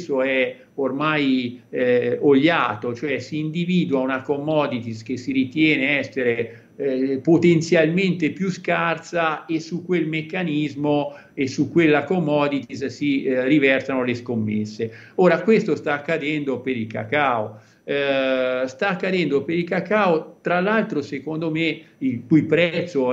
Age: 50-69